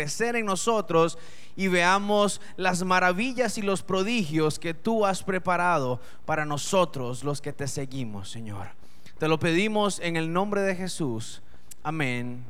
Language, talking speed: Spanish, 140 wpm